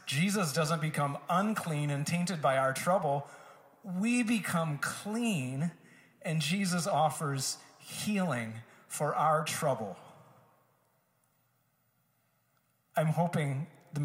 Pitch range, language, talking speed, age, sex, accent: 130-175 Hz, English, 95 wpm, 40-59, male, American